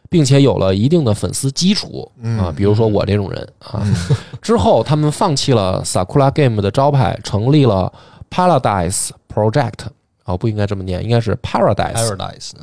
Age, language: 20-39, Chinese